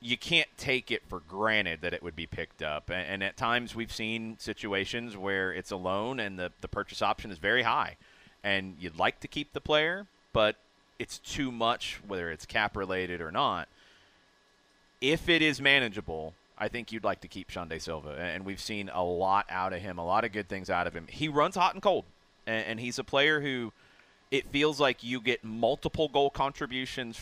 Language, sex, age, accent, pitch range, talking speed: English, male, 30-49, American, 95-140 Hz, 205 wpm